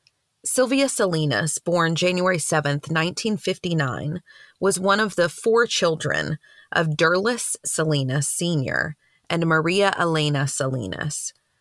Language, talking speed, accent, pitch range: English, 105 wpm, American, 150-190 Hz